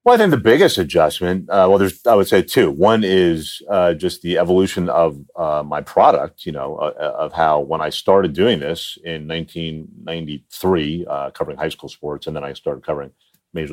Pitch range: 75-95 Hz